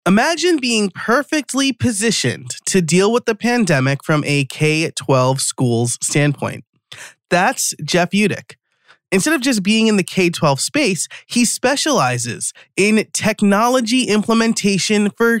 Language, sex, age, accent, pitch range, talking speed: English, male, 30-49, American, 150-205 Hz, 120 wpm